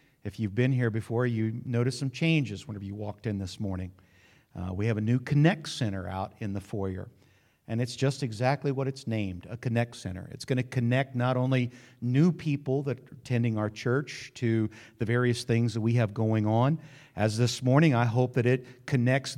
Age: 50-69